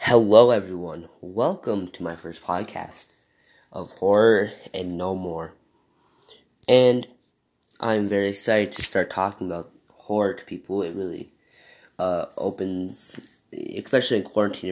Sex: male